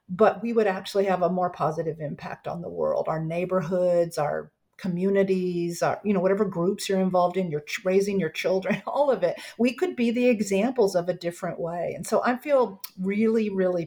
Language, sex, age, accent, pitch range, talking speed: English, female, 50-69, American, 180-230 Hz, 200 wpm